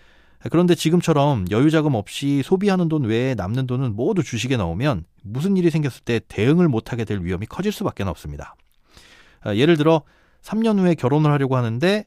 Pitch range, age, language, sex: 105-160 Hz, 30-49, Korean, male